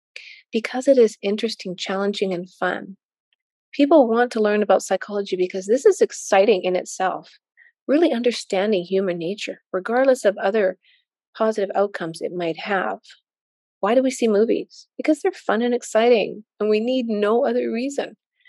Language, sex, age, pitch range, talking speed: English, female, 30-49, 195-235 Hz, 155 wpm